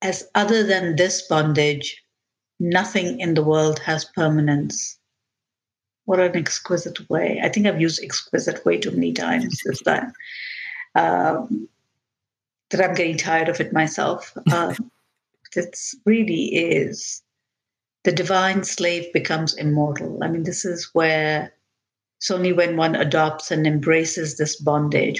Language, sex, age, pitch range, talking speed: English, female, 50-69, 150-185 Hz, 130 wpm